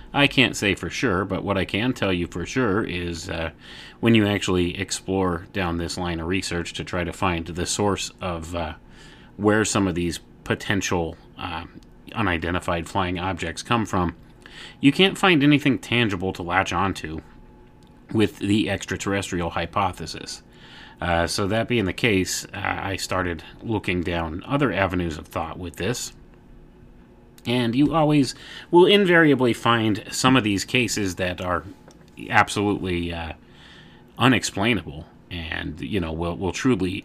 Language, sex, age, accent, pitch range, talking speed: English, male, 30-49, American, 85-105 Hz, 150 wpm